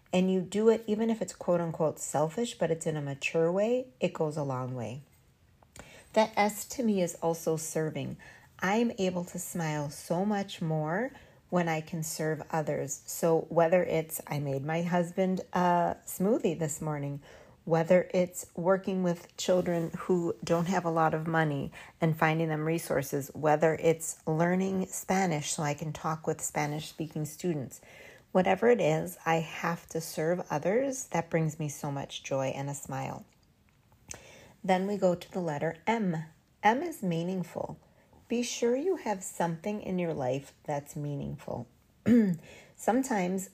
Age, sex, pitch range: 40-59, female, 155-190 Hz